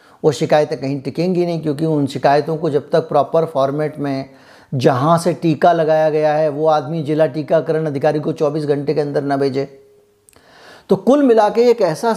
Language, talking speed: Hindi, 175 wpm